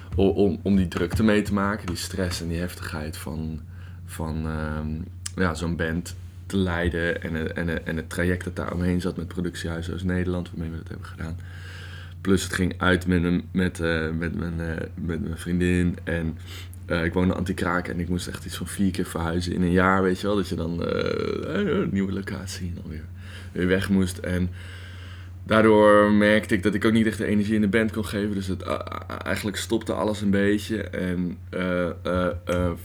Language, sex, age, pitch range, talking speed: Dutch, male, 20-39, 85-95 Hz, 200 wpm